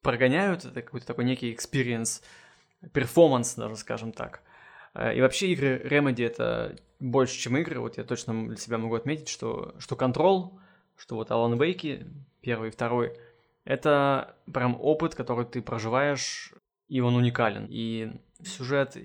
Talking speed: 145 wpm